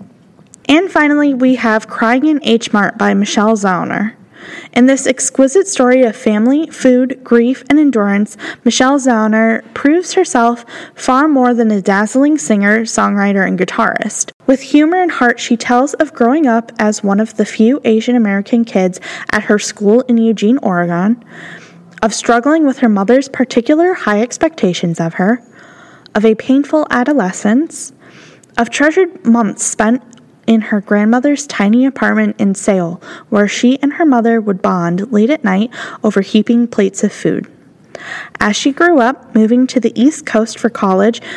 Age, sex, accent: 10-29, female, American